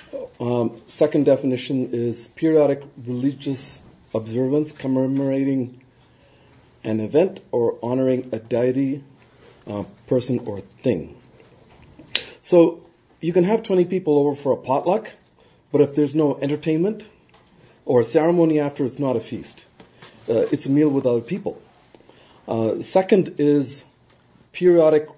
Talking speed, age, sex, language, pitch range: 120 wpm, 40-59, male, English, 125-160 Hz